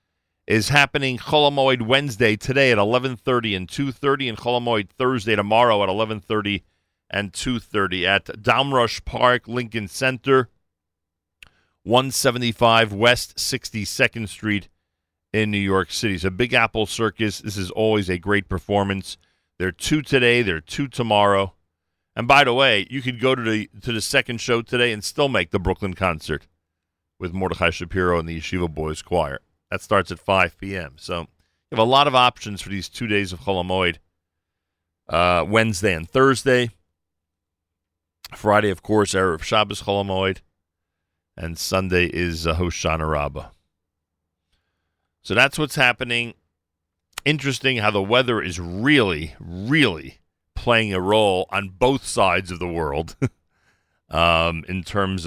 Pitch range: 85-115 Hz